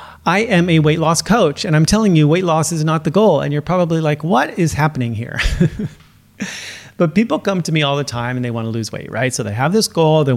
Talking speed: 260 wpm